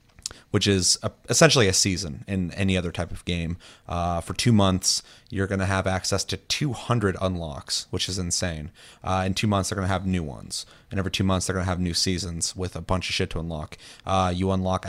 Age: 30-49